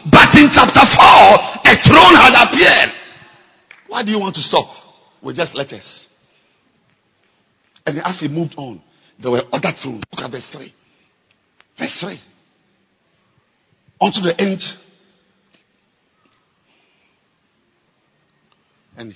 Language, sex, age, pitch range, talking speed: English, male, 50-69, 165-245 Hz, 120 wpm